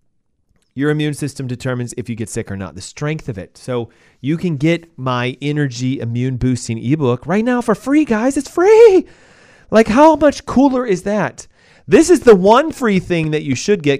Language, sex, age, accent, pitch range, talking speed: English, male, 30-49, American, 125-160 Hz, 195 wpm